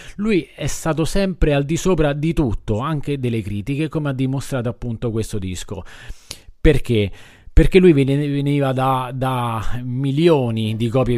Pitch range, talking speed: 115-150 Hz, 145 wpm